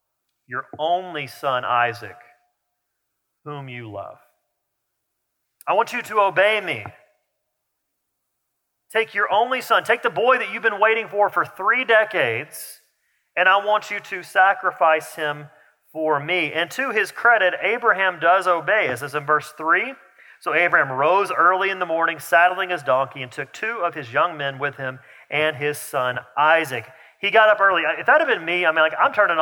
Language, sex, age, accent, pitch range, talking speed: English, male, 40-59, American, 150-195 Hz, 175 wpm